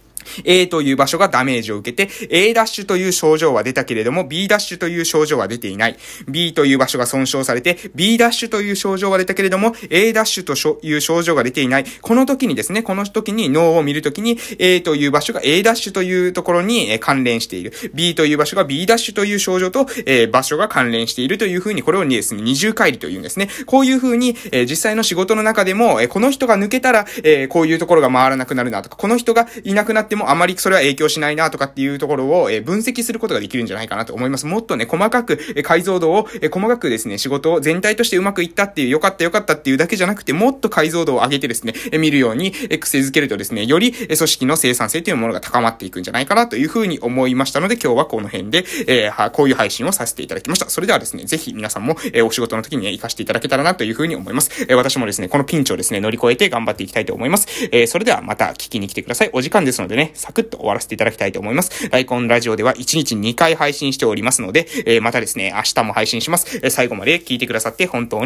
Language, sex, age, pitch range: Japanese, male, 20-39, 135-215 Hz